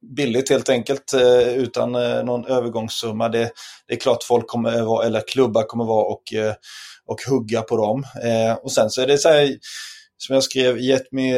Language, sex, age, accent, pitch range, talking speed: Swedish, male, 20-39, native, 115-135 Hz, 180 wpm